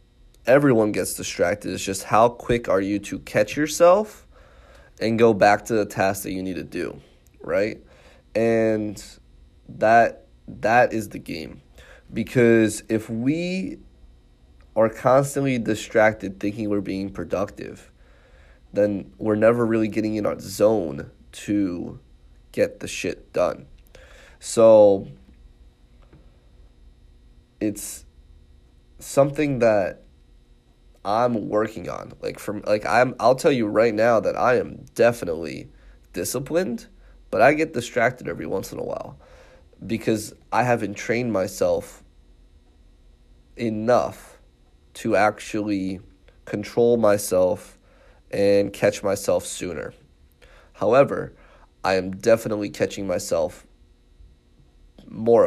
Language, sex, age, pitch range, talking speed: English, male, 20-39, 75-110 Hz, 110 wpm